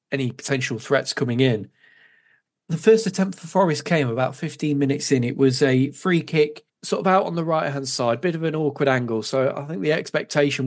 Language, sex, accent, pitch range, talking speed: English, male, British, 130-155 Hz, 210 wpm